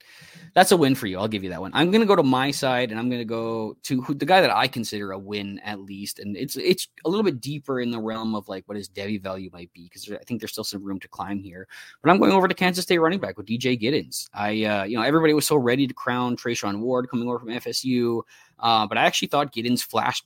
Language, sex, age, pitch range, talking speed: English, male, 20-39, 110-150 Hz, 285 wpm